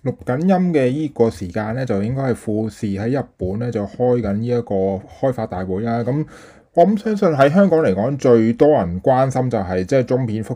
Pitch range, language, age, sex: 100-125 Hz, Chinese, 20-39, male